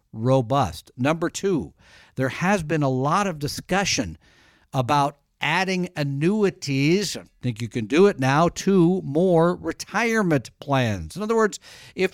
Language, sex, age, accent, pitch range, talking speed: English, male, 50-69, American, 130-185 Hz, 140 wpm